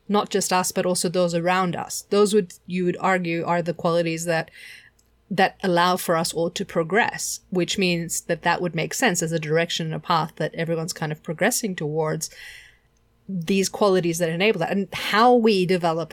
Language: English